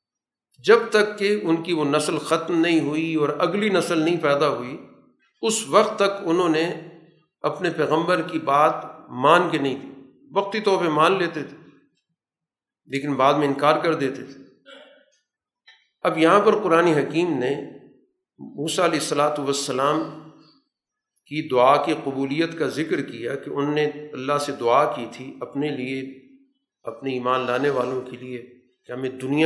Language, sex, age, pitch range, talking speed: Urdu, male, 50-69, 140-185 Hz, 160 wpm